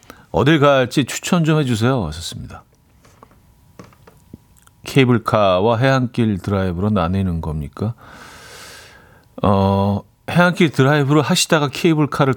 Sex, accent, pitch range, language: male, native, 100-145 Hz, Korean